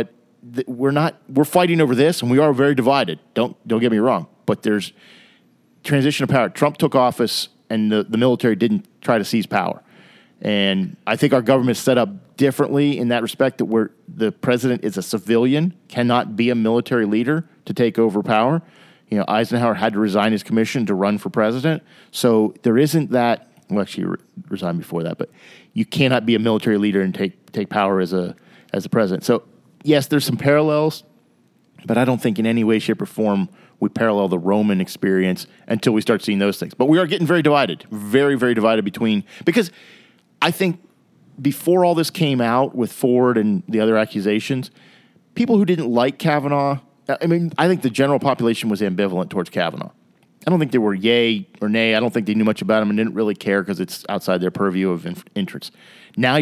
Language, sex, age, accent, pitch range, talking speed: English, male, 40-59, American, 105-140 Hz, 205 wpm